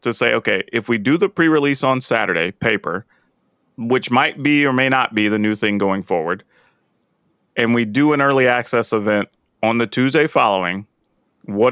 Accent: American